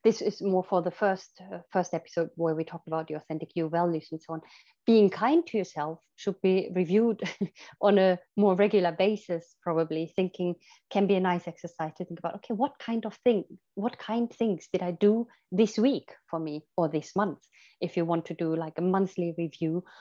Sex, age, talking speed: female, 30-49, 205 wpm